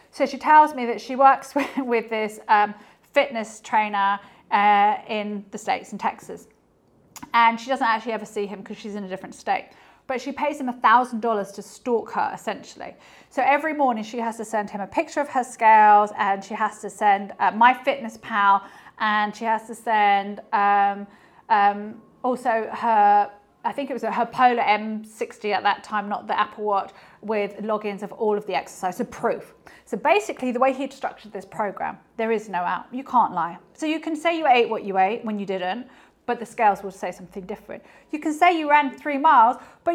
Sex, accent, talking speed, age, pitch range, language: female, British, 210 wpm, 30-49, 205-275 Hz, English